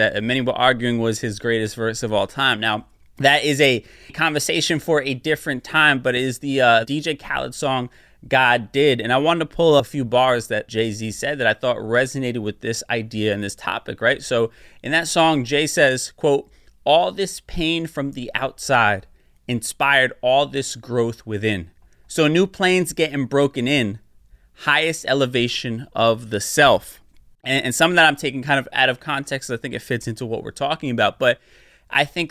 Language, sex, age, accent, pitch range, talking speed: English, male, 20-39, American, 120-155 Hz, 195 wpm